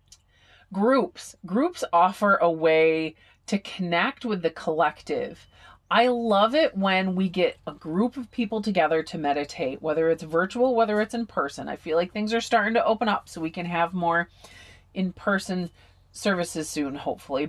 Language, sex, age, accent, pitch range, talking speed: English, female, 30-49, American, 170-220 Hz, 165 wpm